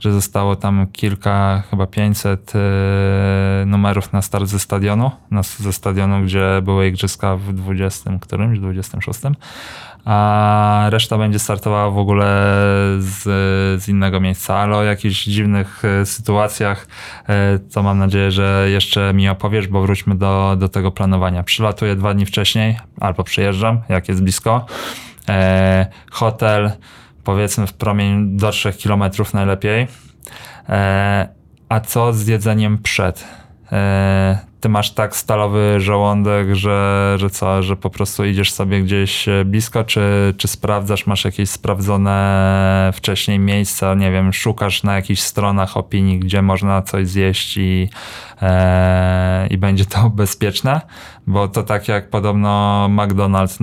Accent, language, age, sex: native, Polish, 20-39, male